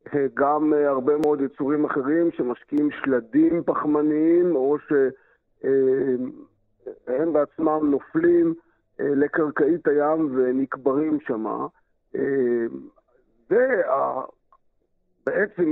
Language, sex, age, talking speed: Hebrew, male, 50-69, 65 wpm